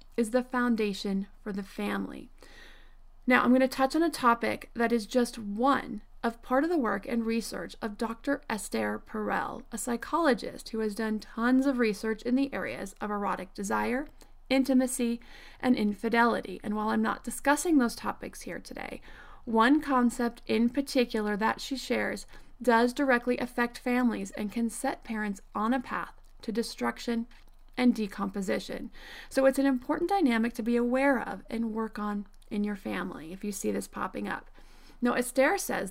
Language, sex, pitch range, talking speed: English, female, 215-260 Hz, 165 wpm